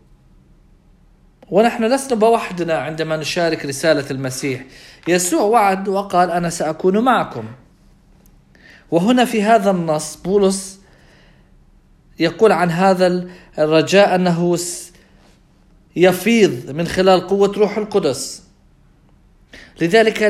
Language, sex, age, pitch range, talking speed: English, male, 40-59, 155-200 Hz, 90 wpm